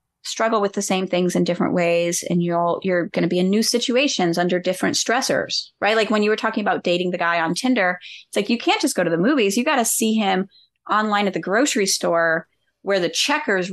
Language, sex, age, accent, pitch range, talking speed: English, female, 30-49, American, 180-250 Hz, 240 wpm